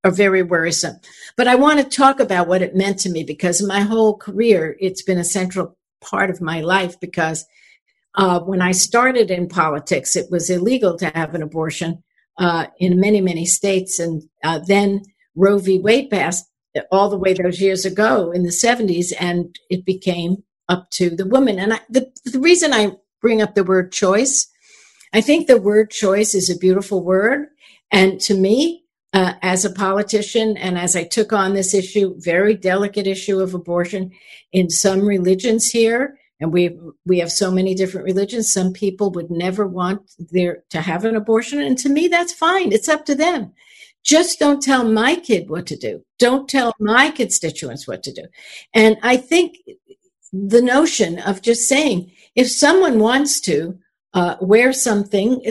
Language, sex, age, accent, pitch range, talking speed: English, female, 60-79, American, 180-245 Hz, 180 wpm